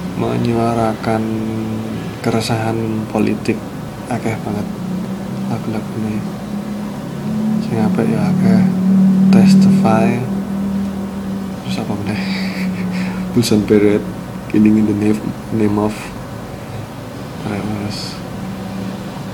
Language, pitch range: Indonesian, 105-135 Hz